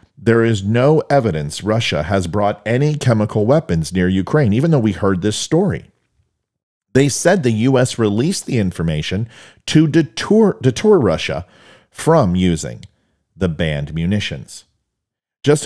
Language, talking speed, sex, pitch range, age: English, 130 wpm, male, 95-140 Hz, 40-59